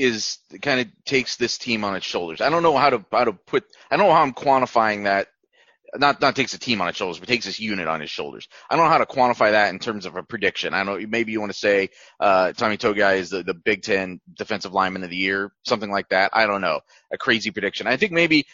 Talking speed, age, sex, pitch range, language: 270 wpm, 30-49, male, 100-125 Hz, English